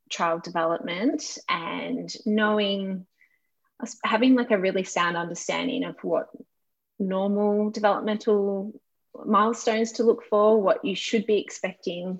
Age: 20-39